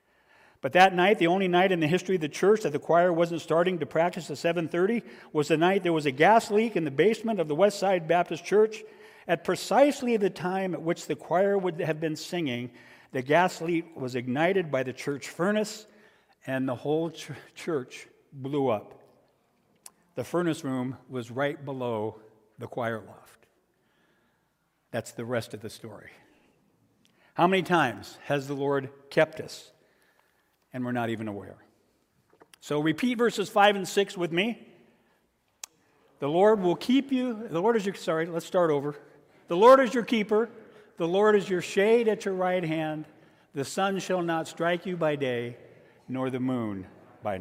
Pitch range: 130-185 Hz